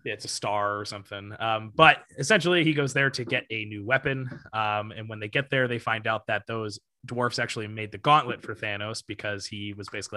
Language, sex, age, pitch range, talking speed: English, male, 20-39, 105-130 Hz, 225 wpm